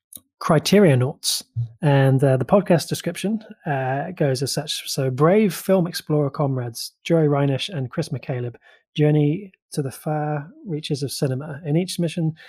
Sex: male